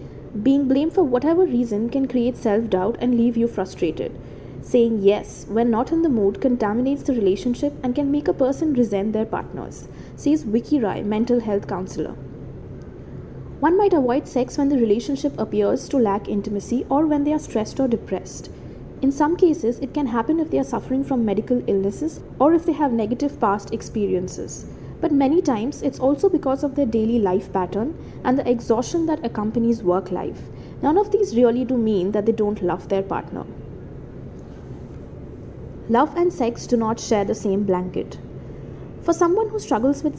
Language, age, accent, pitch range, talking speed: English, 20-39, Indian, 220-290 Hz, 175 wpm